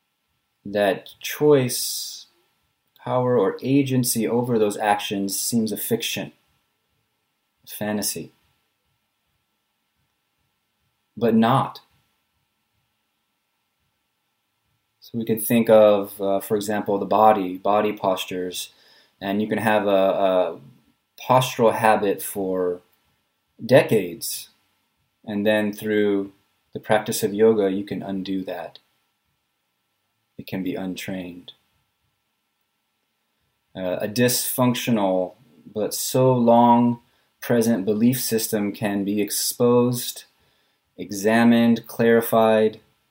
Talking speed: 90 wpm